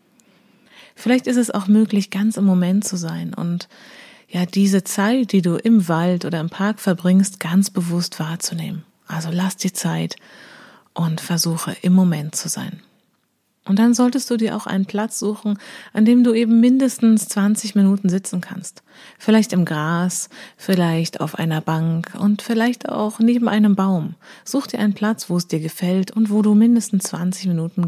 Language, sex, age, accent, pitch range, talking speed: German, female, 30-49, German, 175-215 Hz, 170 wpm